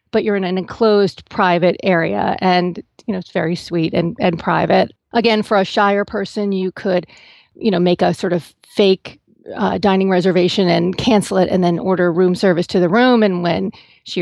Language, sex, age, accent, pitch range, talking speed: English, female, 40-59, American, 180-215 Hz, 200 wpm